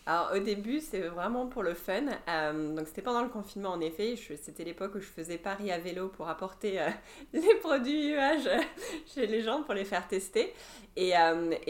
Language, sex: English, female